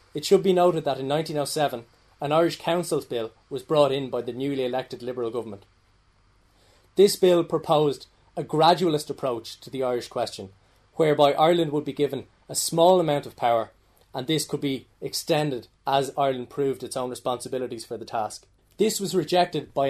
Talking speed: 175 wpm